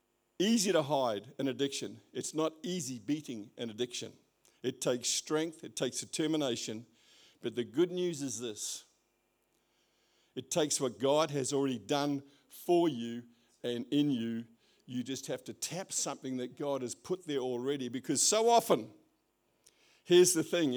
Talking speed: 155 wpm